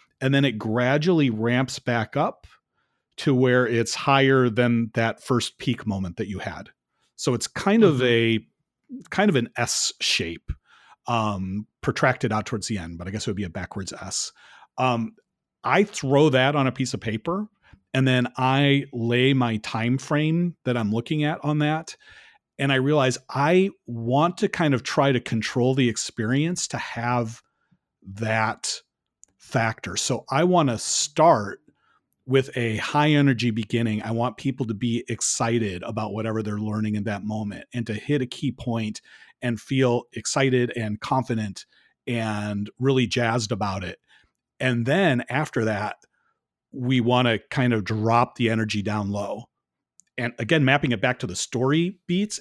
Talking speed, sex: 165 wpm, male